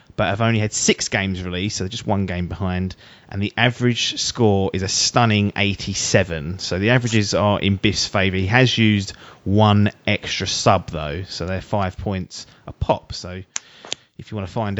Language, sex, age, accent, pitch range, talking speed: English, male, 30-49, British, 100-130 Hz, 190 wpm